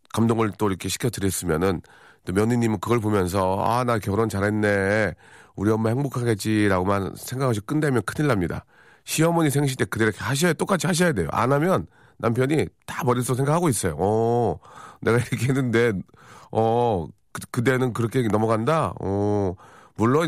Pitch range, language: 105-140 Hz, Korean